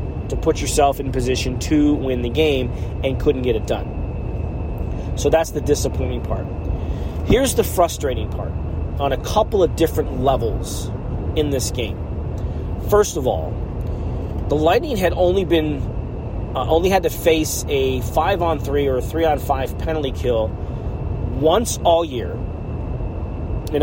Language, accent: English, American